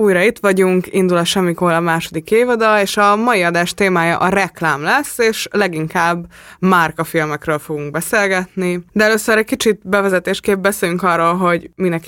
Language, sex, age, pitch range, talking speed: Hungarian, female, 20-39, 165-190 Hz, 150 wpm